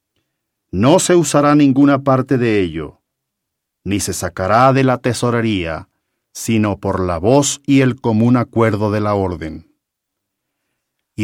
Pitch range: 100-140 Hz